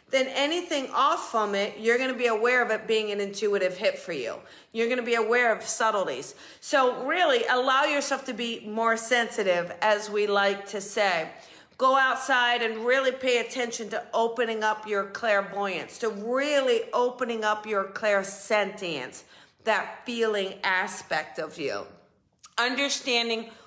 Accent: American